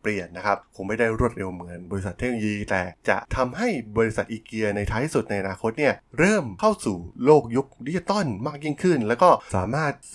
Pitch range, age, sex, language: 100-130 Hz, 20-39, male, Thai